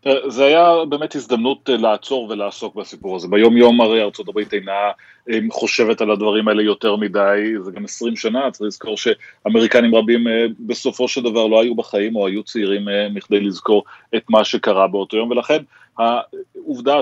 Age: 30-49